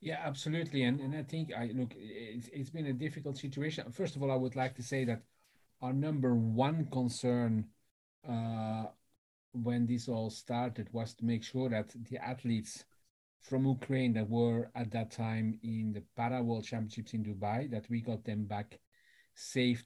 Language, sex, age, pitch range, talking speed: English, male, 40-59, 110-125 Hz, 180 wpm